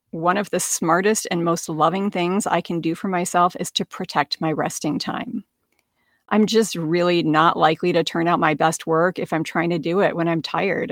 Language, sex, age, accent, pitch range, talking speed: English, female, 30-49, American, 170-205 Hz, 215 wpm